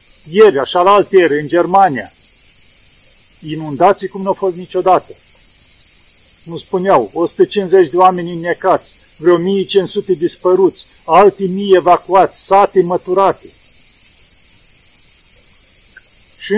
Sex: male